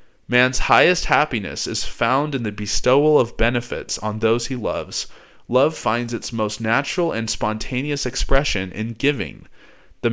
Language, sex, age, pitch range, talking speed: English, male, 20-39, 110-135 Hz, 150 wpm